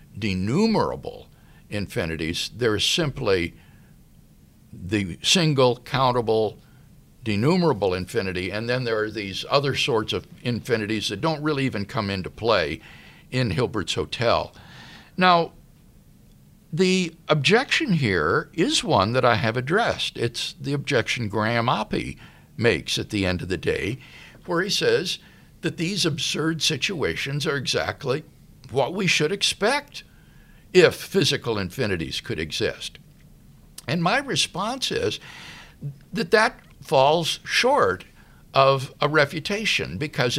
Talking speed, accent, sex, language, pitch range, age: 120 wpm, American, male, English, 110-175 Hz, 60-79